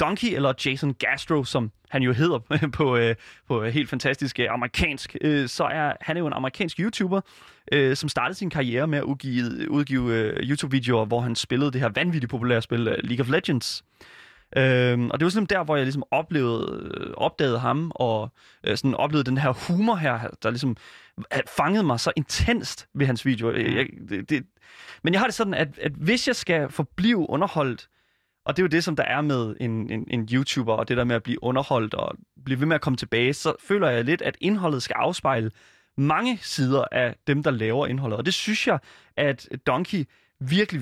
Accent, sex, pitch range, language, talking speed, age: native, male, 125-160 Hz, Danish, 190 wpm, 20-39